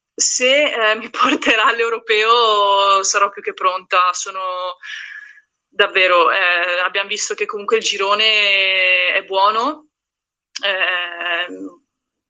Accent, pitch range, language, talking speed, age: native, 185-225 Hz, Italian, 100 wpm, 20-39